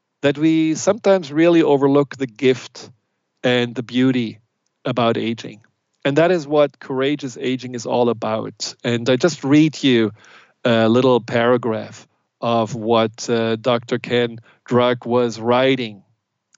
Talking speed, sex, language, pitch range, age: 135 wpm, male, English, 120-145 Hz, 40-59